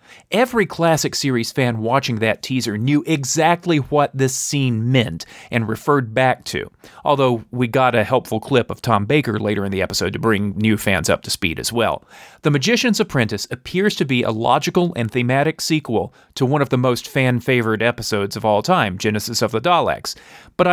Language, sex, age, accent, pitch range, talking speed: English, male, 40-59, American, 115-160 Hz, 190 wpm